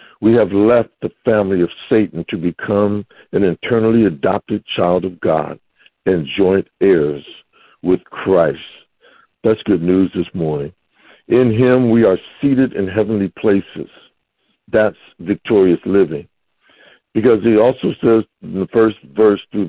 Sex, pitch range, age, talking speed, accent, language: male, 90-115 Hz, 60-79, 135 wpm, American, English